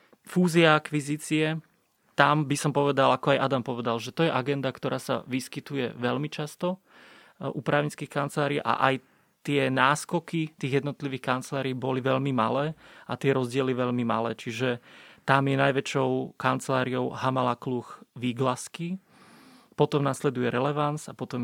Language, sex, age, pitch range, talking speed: Slovak, male, 30-49, 125-150 Hz, 140 wpm